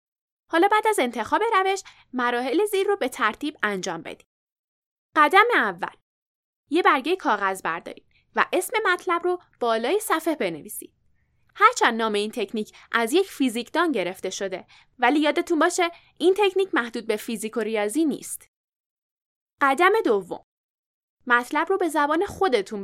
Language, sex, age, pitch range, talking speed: Persian, female, 10-29, 230-375 Hz, 135 wpm